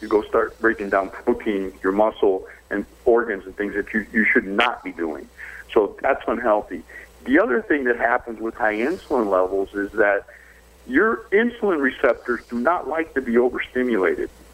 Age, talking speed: 50-69, 175 wpm